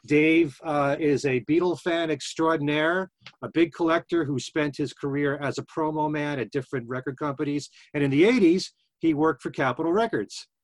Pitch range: 135-170 Hz